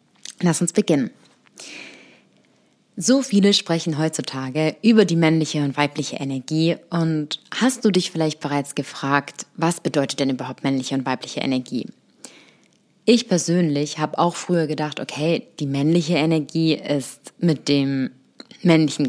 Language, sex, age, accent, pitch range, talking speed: German, female, 20-39, German, 150-190 Hz, 130 wpm